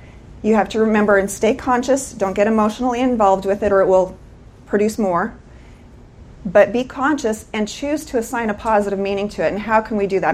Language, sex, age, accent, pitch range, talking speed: English, female, 30-49, American, 195-235 Hz, 210 wpm